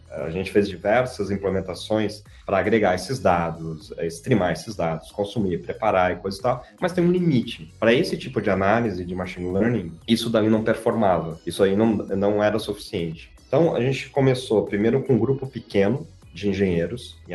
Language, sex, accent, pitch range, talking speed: Portuguese, male, Brazilian, 95-125 Hz, 180 wpm